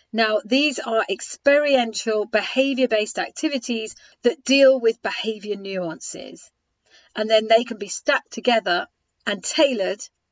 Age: 40-59